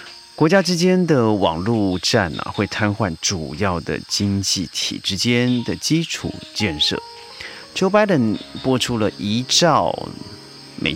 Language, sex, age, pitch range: Chinese, male, 30-49, 95-130 Hz